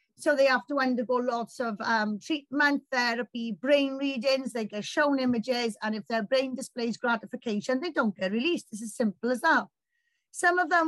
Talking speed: 190 wpm